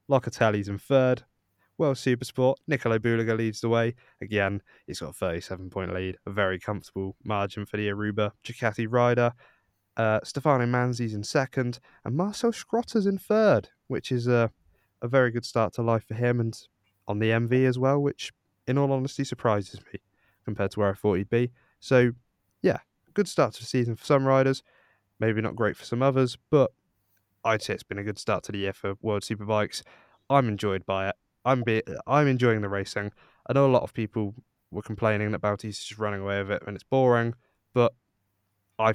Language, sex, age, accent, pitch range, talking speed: English, male, 20-39, British, 100-125 Hz, 200 wpm